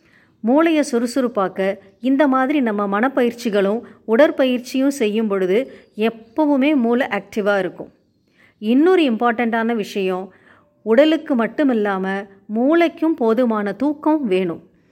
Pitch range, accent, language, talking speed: 210-265 Hz, native, Tamil, 90 wpm